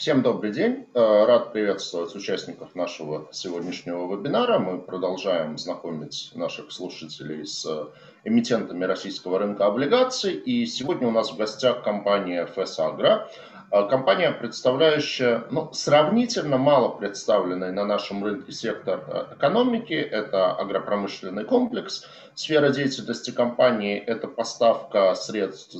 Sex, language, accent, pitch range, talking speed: male, Russian, native, 95-145 Hz, 110 wpm